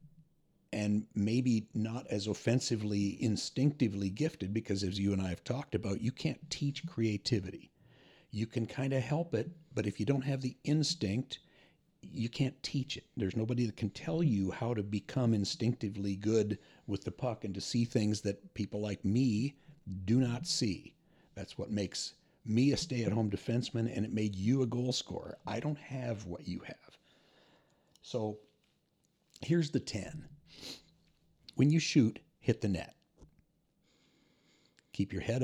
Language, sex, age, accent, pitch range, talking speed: English, male, 50-69, American, 100-140 Hz, 160 wpm